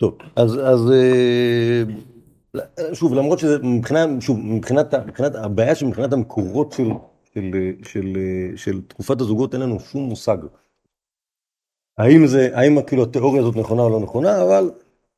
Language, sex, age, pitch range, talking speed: Hebrew, male, 50-69, 105-135 Hz, 140 wpm